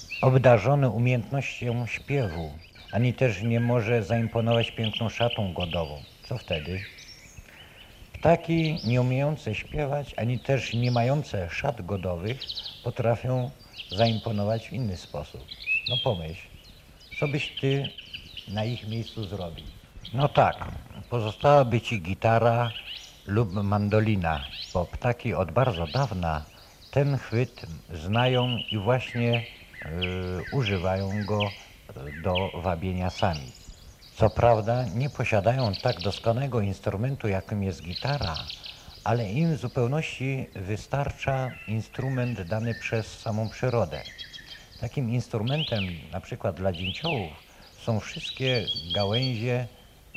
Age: 50-69